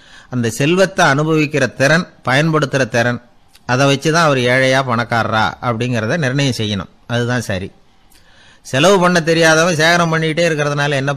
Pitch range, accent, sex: 115-150 Hz, native, male